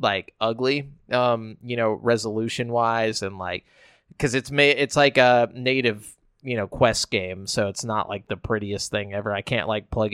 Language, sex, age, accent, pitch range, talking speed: English, male, 20-39, American, 110-140 Hz, 185 wpm